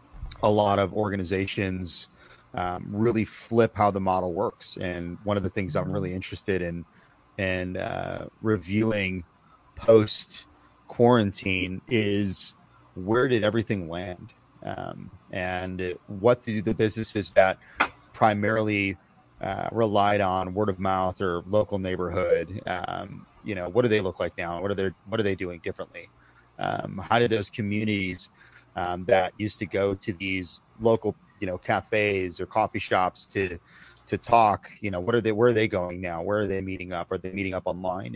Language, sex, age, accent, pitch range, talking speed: English, male, 30-49, American, 95-110 Hz, 165 wpm